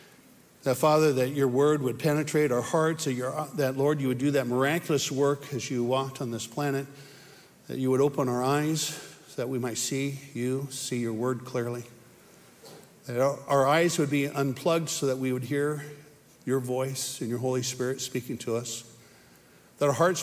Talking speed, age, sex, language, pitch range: 190 wpm, 50-69, male, English, 125-150 Hz